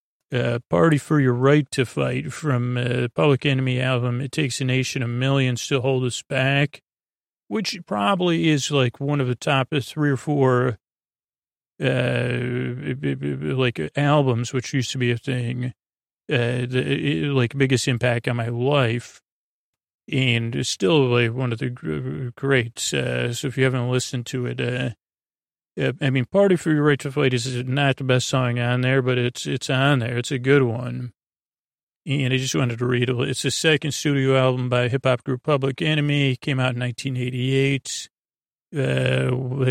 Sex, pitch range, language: male, 125-140 Hz, English